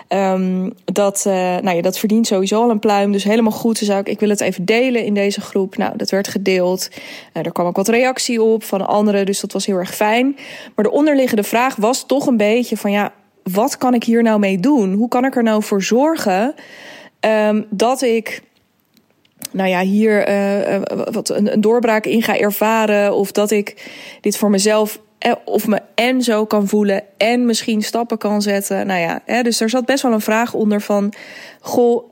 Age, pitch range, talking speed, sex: 20-39, 200-240 Hz, 205 wpm, female